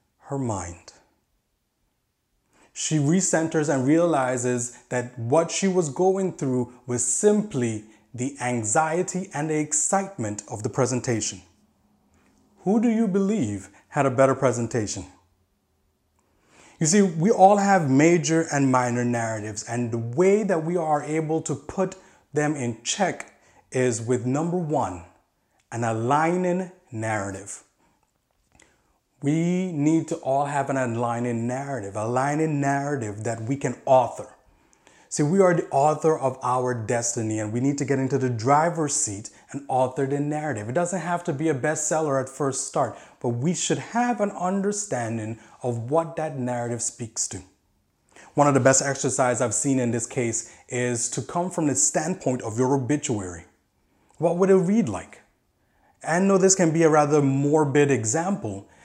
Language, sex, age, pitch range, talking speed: English, male, 30-49, 120-165 Hz, 150 wpm